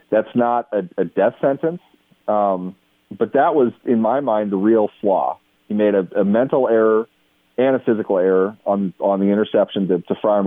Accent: American